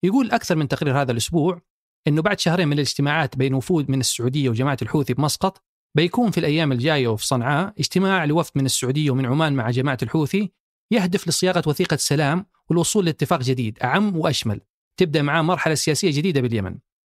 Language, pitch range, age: Arabic, 135-175 Hz, 30-49